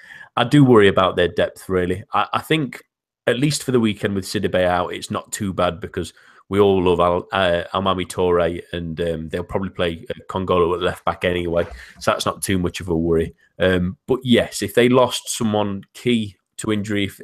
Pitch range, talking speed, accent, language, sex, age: 90-105 Hz, 205 wpm, British, English, male, 30-49